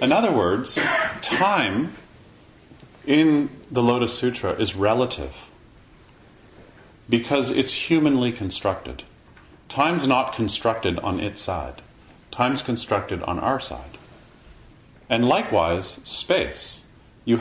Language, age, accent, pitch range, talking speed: English, 40-59, American, 100-125 Hz, 100 wpm